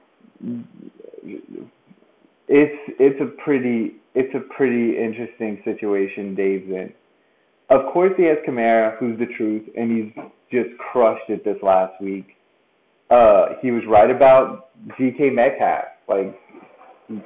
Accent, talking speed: American, 125 wpm